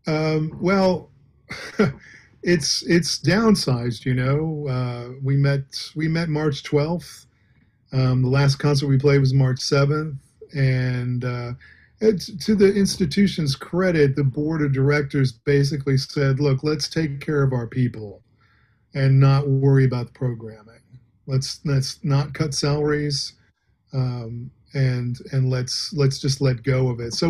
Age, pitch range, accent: 40-59, 130-155 Hz, American